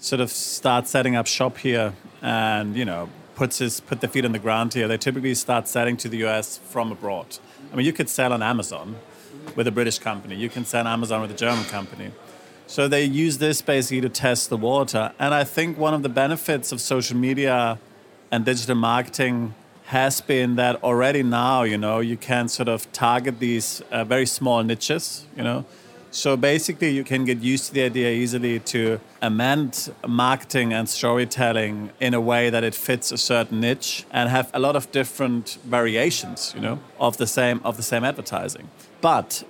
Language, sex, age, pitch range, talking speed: English, male, 30-49, 115-130 Hz, 200 wpm